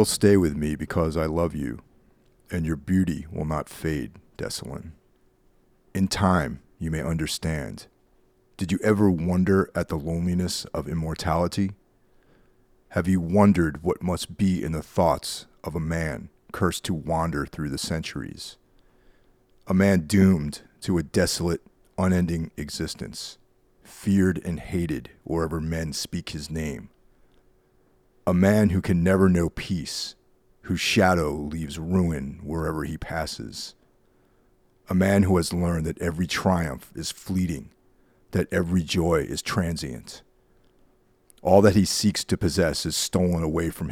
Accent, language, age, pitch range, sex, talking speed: American, English, 30-49, 80-95 Hz, male, 140 wpm